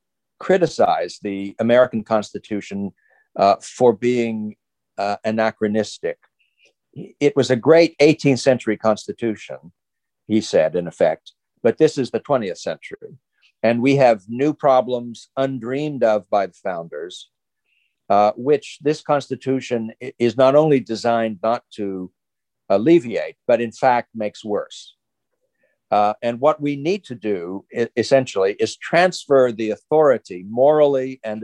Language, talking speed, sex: English, 125 wpm, male